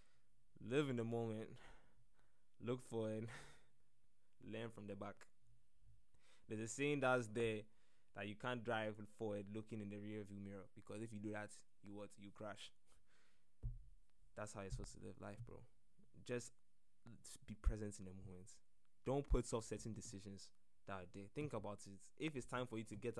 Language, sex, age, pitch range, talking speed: English, male, 10-29, 100-115 Hz, 170 wpm